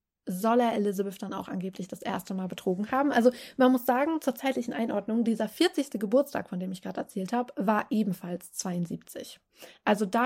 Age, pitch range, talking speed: 20-39, 195-255 Hz, 185 wpm